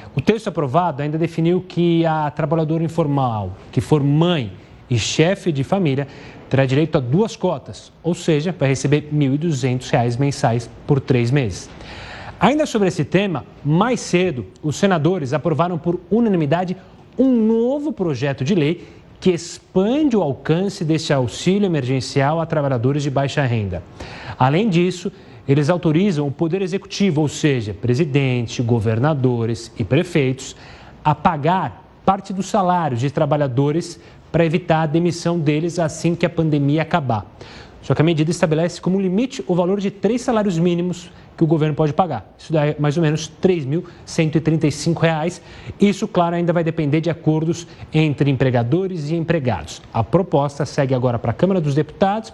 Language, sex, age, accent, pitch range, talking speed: Portuguese, male, 30-49, Brazilian, 135-175 Hz, 155 wpm